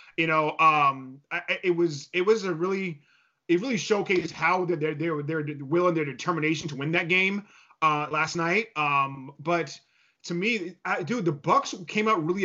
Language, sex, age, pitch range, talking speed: English, male, 20-39, 155-185 Hz, 185 wpm